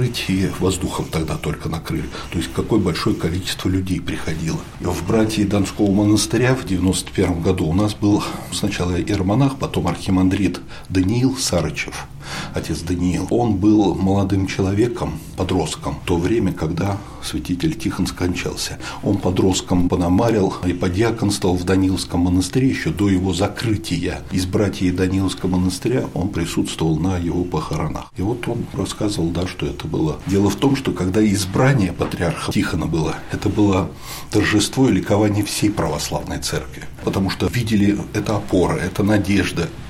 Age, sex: 60-79, male